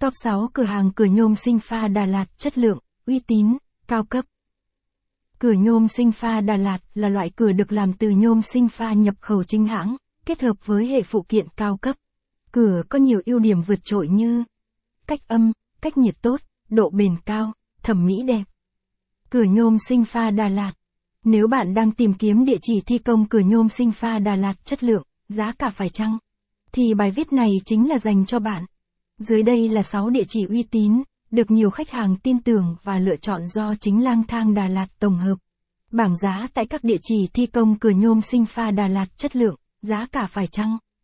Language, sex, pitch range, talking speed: Vietnamese, female, 200-235 Hz, 210 wpm